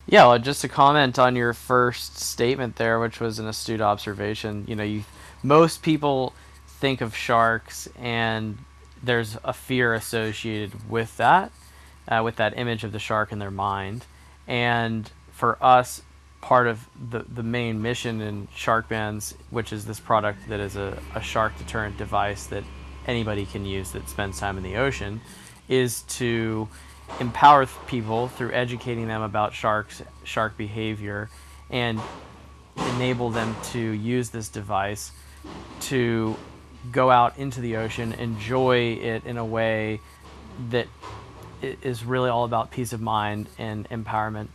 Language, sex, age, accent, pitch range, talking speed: English, male, 20-39, American, 105-120 Hz, 150 wpm